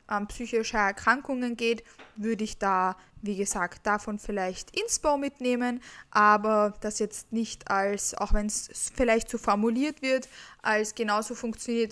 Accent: German